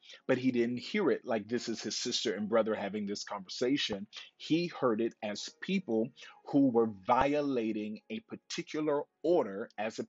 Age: 40-59